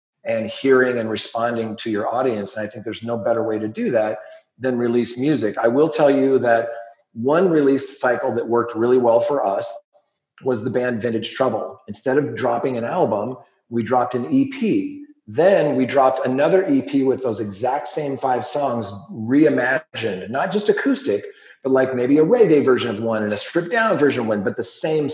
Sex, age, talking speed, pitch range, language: male, 40-59, 195 wpm, 115-150 Hz, English